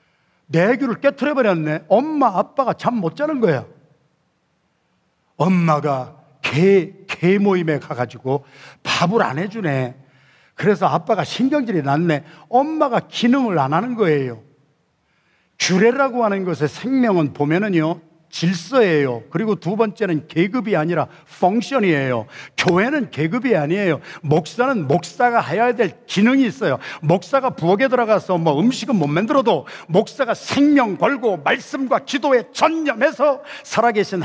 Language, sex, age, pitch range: Korean, male, 50-69, 160-240 Hz